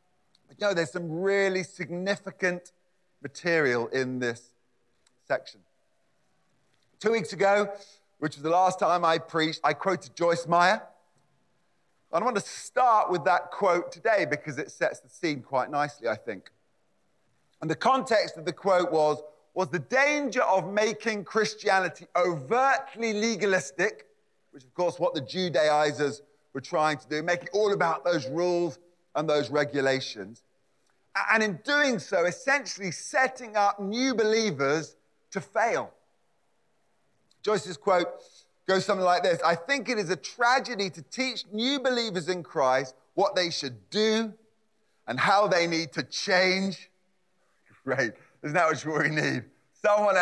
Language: English